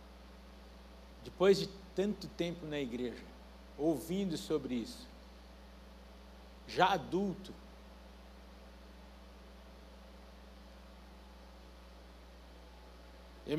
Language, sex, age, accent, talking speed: Portuguese, male, 60-79, Brazilian, 55 wpm